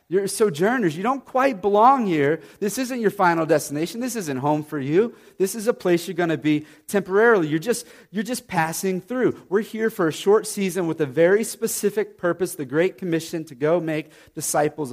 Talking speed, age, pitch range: 200 wpm, 30-49, 150-205 Hz